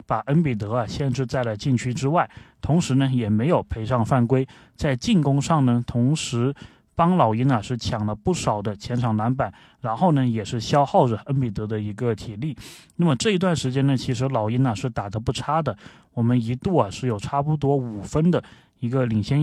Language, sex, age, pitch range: Chinese, male, 20-39, 110-140 Hz